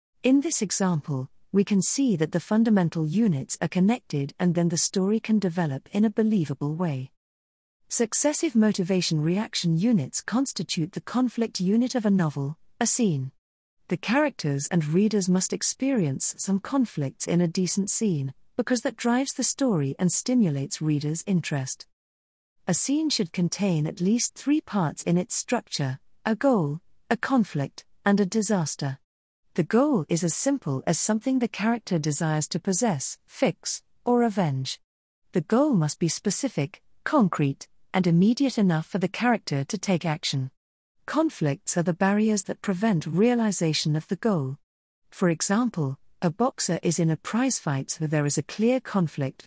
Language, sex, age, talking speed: English, female, 40-59, 155 wpm